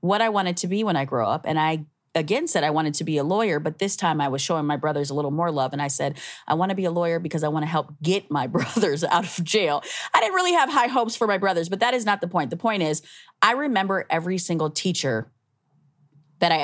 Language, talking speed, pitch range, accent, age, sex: English, 275 wpm, 150-195 Hz, American, 30-49, female